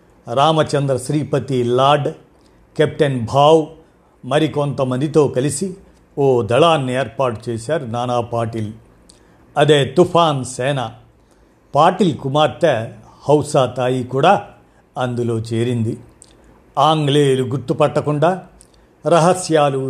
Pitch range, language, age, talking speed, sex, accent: 130-160 Hz, Telugu, 50-69, 75 wpm, male, native